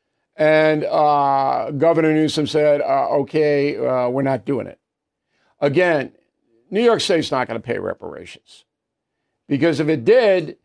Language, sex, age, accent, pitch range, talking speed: English, male, 50-69, American, 150-210 Hz, 140 wpm